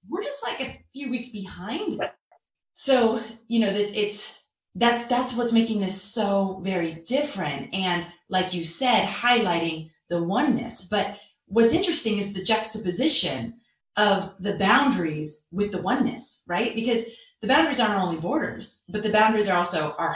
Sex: female